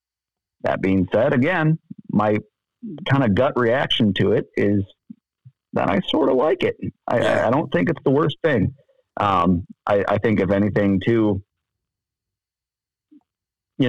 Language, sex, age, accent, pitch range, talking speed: English, male, 40-59, American, 95-120 Hz, 145 wpm